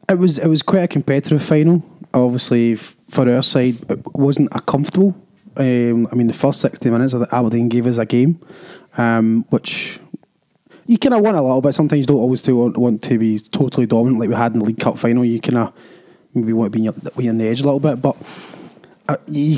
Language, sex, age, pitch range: English, male, 20-39, 120-155 Hz